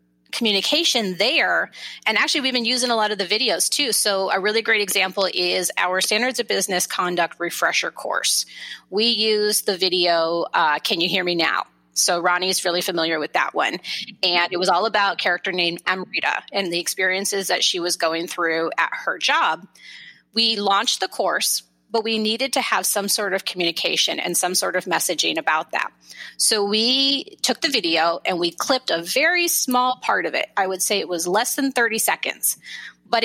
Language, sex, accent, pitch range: English, female, American, 180-240 Hz